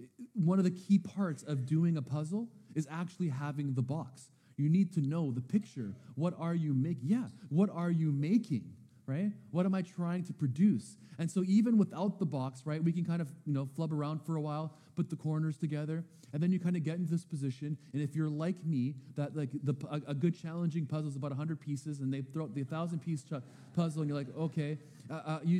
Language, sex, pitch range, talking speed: English, male, 145-180 Hz, 230 wpm